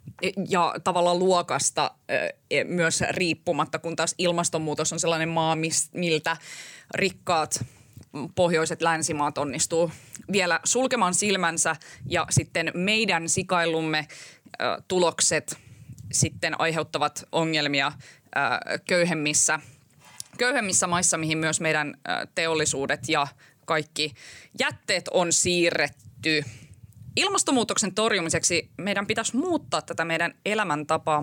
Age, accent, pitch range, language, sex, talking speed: 20-39, native, 155-190 Hz, Finnish, female, 90 wpm